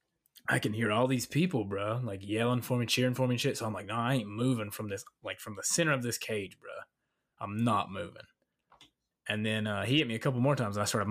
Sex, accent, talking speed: male, American, 260 wpm